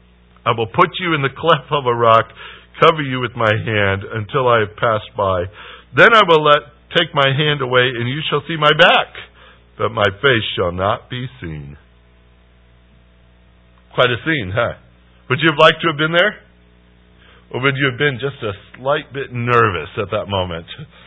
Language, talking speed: English, 190 wpm